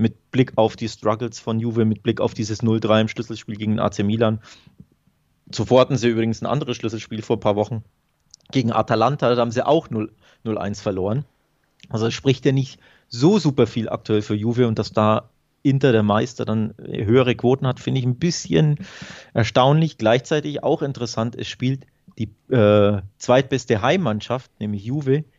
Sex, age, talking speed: male, 30-49, 175 wpm